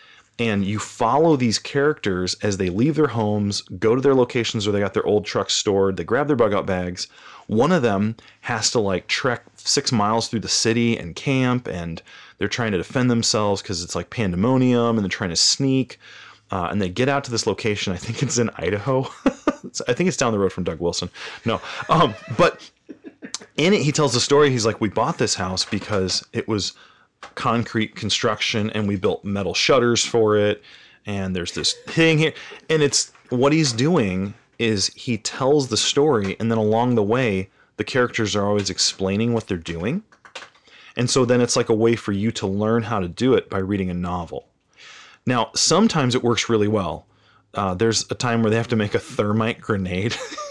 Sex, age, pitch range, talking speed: male, 30-49, 100-125 Hz, 200 wpm